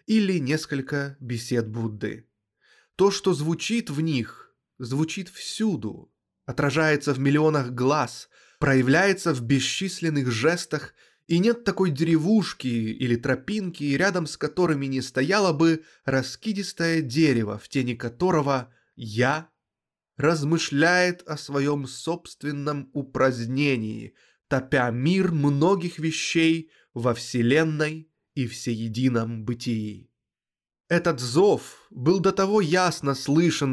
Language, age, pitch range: Russian, 20-39, 130-175 Hz